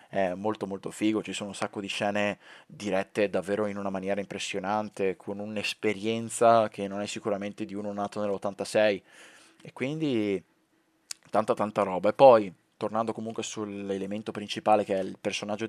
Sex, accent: male, native